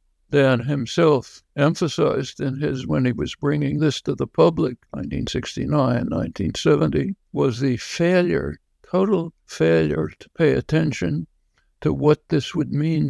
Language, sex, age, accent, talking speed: English, male, 60-79, American, 130 wpm